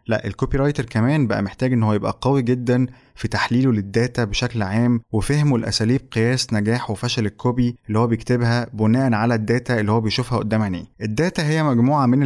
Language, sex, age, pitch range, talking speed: Arabic, male, 20-39, 110-130 Hz, 180 wpm